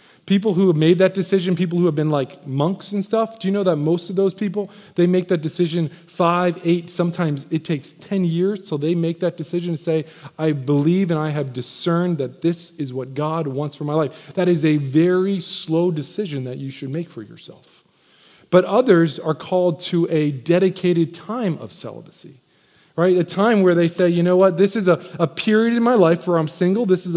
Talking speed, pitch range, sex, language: 220 wpm, 175-225 Hz, male, English